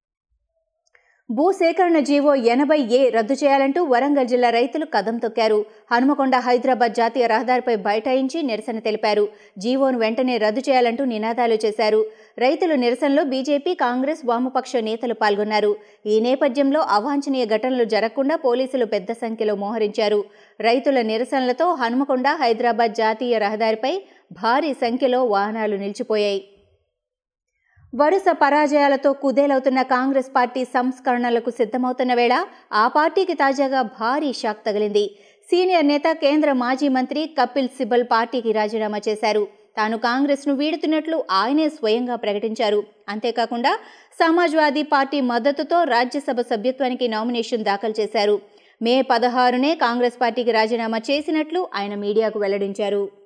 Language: Telugu